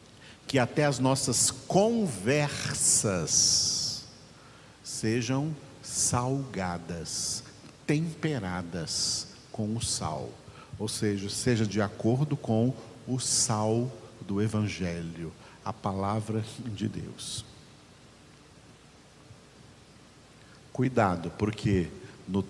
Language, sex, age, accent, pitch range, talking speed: Portuguese, male, 50-69, Brazilian, 100-125 Hz, 75 wpm